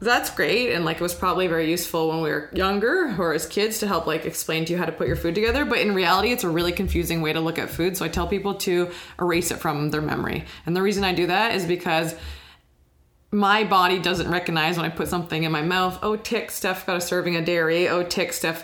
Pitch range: 160-185 Hz